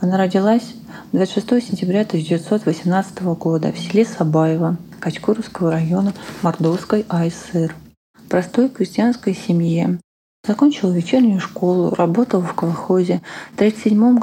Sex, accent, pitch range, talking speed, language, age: female, native, 175-215 Hz, 105 wpm, Russian, 20-39